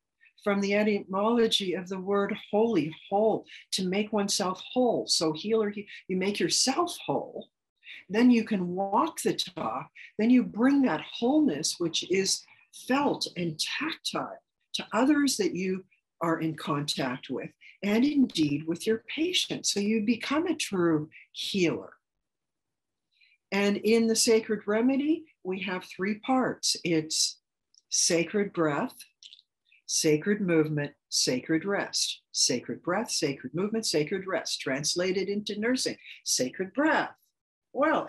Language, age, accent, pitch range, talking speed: English, 60-79, American, 170-235 Hz, 130 wpm